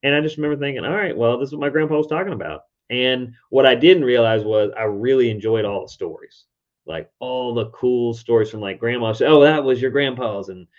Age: 30-49